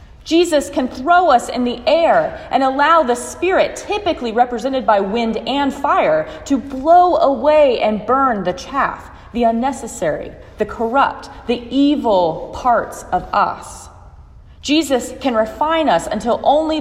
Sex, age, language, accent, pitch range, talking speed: female, 30-49, English, American, 225-300 Hz, 140 wpm